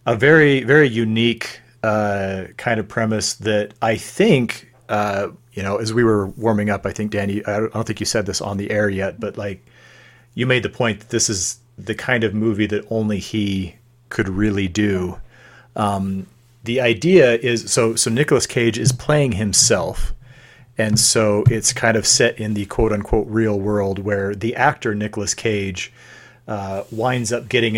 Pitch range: 105-115 Hz